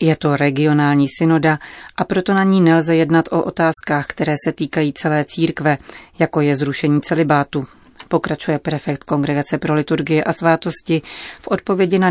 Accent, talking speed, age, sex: native, 155 wpm, 30-49, female